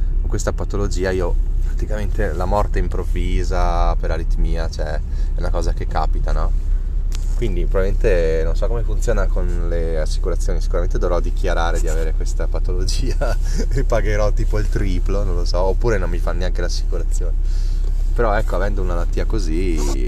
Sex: male